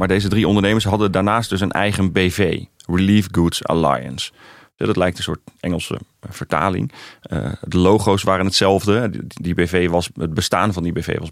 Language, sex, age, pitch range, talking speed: Dutch, male, 30-49, 90-105 Hz, 160 wpm